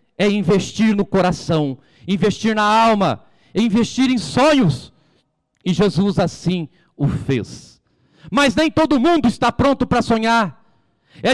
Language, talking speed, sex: Portuguese, 130 wpm, male